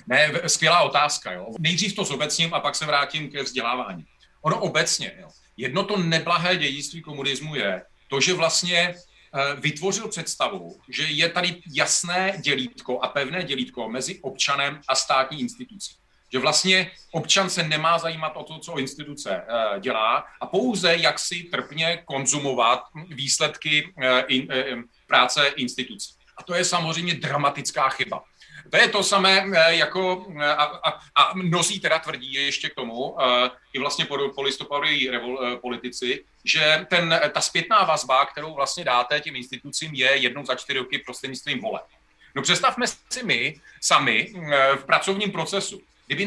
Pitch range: 140-175 Hz